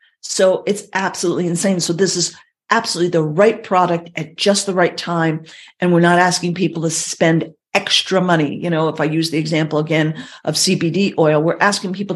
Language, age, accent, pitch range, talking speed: English, 50-69, American, 160-180 Hz, 190 wpm